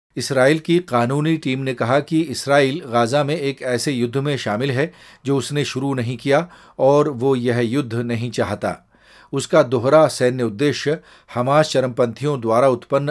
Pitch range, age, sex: 115-140 Hz, 40-59, male